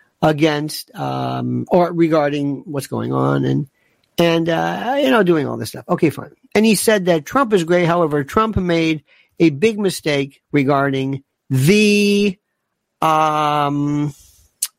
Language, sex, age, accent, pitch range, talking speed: English, male, 50-69, American, 140-195 Hz, 140 wpm